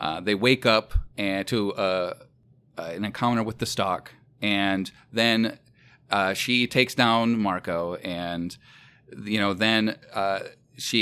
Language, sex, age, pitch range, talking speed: English, male, 30-49, 100-125 Hz, 140 wpm